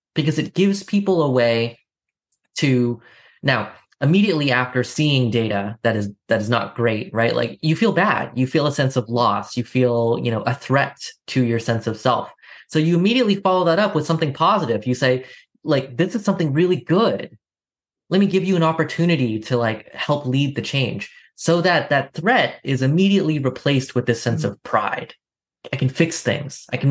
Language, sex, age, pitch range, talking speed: English, male, 20-39, 120-165 Hz, 195 wpm